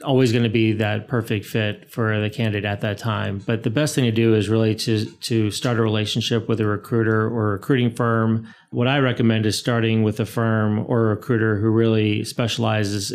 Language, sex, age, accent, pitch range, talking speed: English, male, 30-49, American, 110-125 Hz, 215 wpm